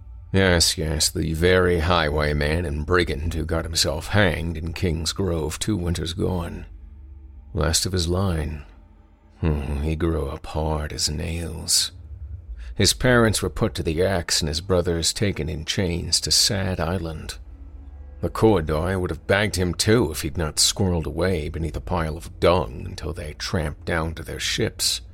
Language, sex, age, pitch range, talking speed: English, male, 50-69, 75-90 Hz, 160 wpm